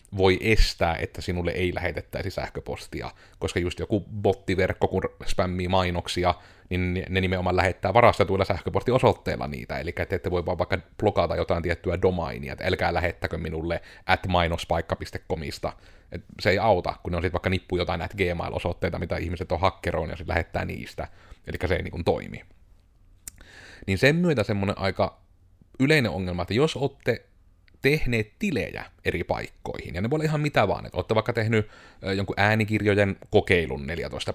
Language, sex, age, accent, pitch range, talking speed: Finnish, male, 30-49, native, 90-105 Hz, 155 wpm